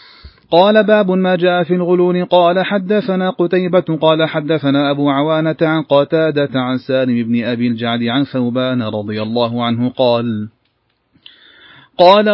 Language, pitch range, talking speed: Arabic, 140-180 Hz, 130 wpm